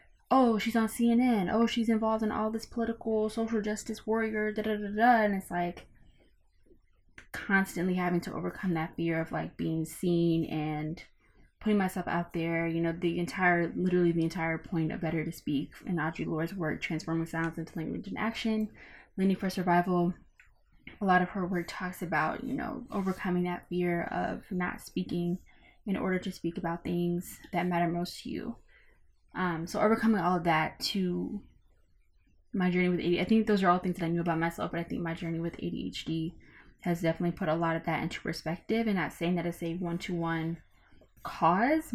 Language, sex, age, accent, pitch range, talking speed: English, female, 20-39, American, 165-195 Hz, 190 wpm